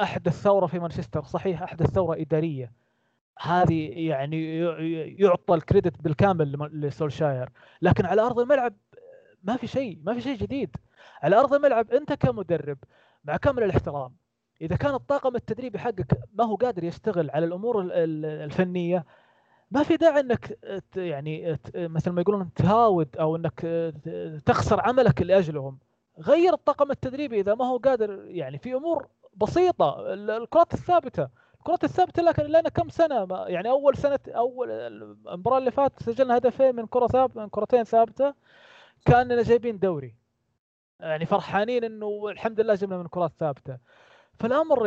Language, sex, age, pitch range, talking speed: Arabic, male, 20-39, 160-245 Hz, 140 wpm